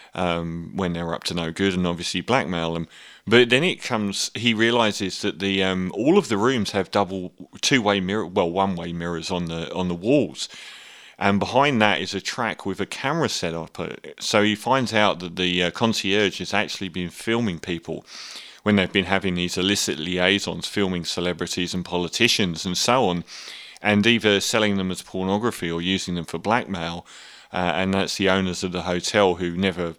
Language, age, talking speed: English, 30-49, 190 wpm